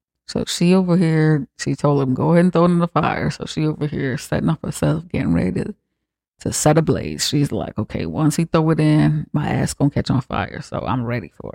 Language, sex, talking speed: English, female, 240 wpm